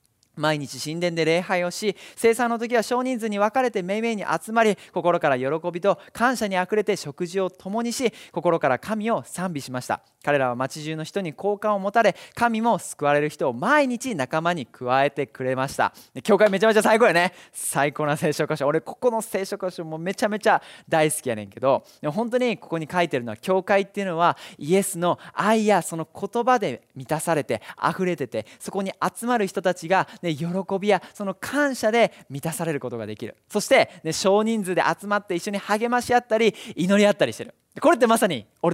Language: Japanese